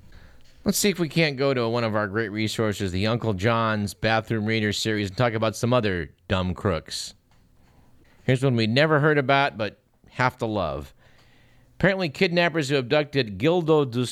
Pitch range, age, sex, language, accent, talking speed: 110-135 Hz, 50-69, male, English, American, 175 wpm